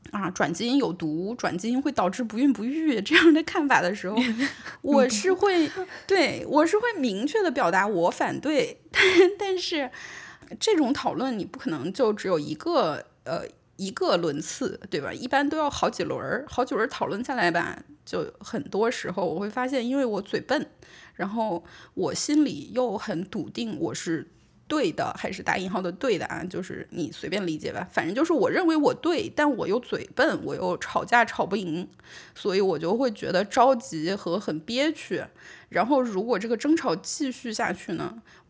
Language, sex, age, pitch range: Chinese, female, 20-39, 200-310 Hz